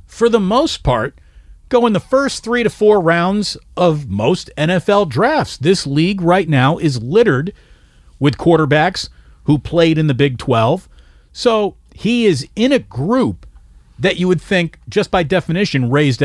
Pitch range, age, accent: 105-175 Hz, 40-59, American